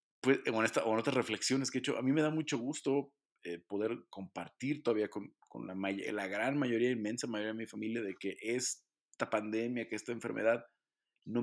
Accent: Mexican